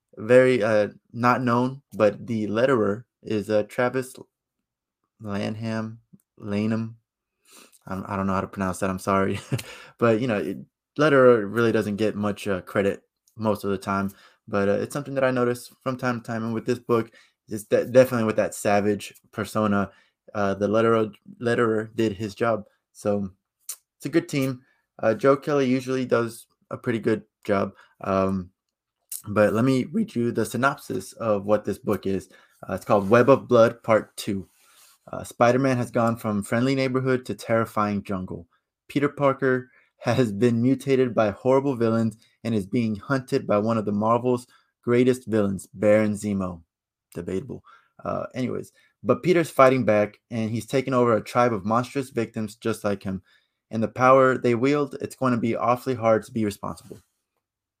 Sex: male